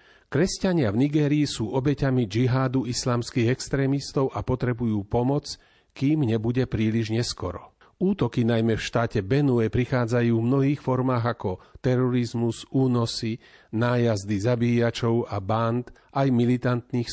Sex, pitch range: male, 110-140 Hz